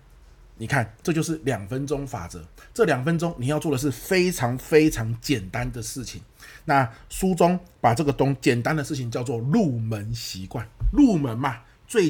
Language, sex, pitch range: Chinese, male, 110-145 Hz